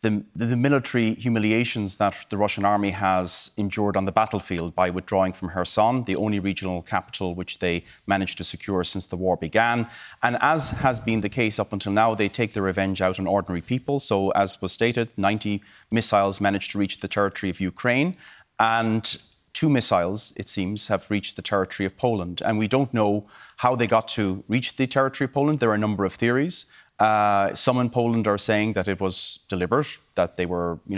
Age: 30-49